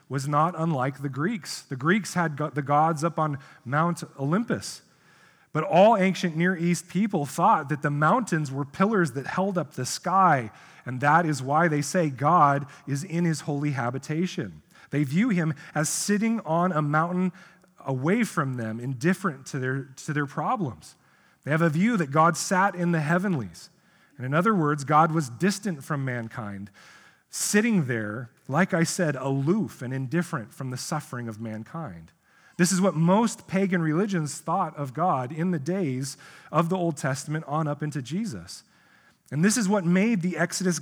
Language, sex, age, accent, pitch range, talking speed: English, male, 30-49, American, 145-185 Hz, 175 wpm